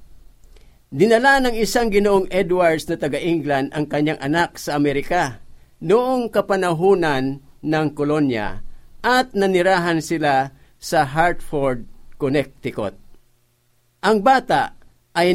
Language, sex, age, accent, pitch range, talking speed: Filipino, male, 50-69, native, 140-195 Hz, 100 wpm